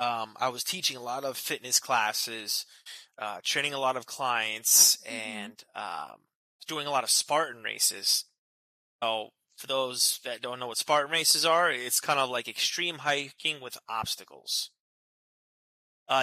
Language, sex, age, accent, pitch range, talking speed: English, male, 20-39, American, 115-140 Hz, 150 wpm